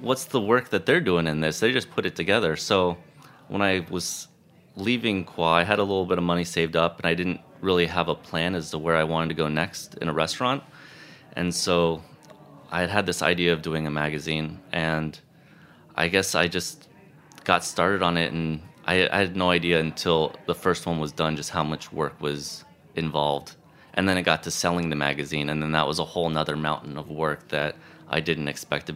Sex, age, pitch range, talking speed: male, 30-49, 80-95 Hz, 220 wpm